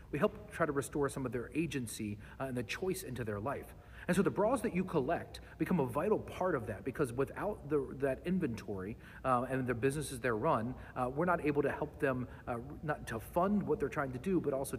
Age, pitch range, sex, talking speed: 40-59, 120-160 Hz, male, 235 wpm